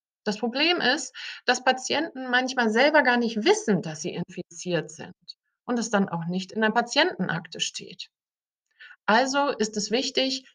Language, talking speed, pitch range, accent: German, 155 wpm, 190-265 Hz, German